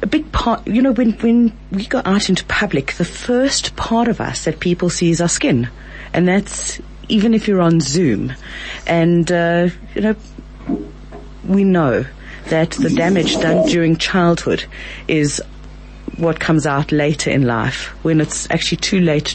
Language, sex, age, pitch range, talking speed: English, female, 40-59, 150-190 Hz, 170 wpm